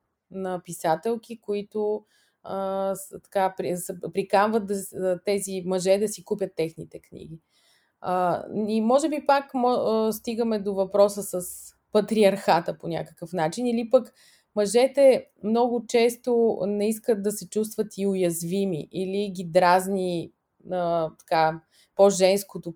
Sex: female